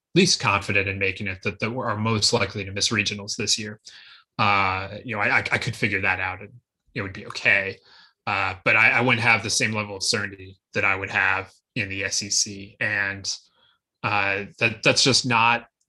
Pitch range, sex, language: 100-135 Hz, male, English